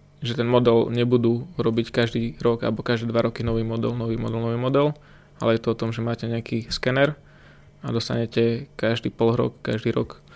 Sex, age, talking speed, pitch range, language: male, 20-39, 190 wpm, 115-125 Hz, Slovak